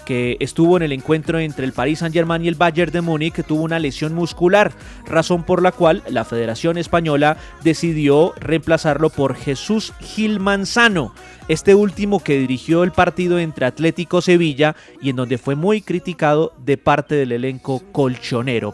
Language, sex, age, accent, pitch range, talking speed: Spanish, male, 30-49, Colombian, 140-180 Hz, 165 wpm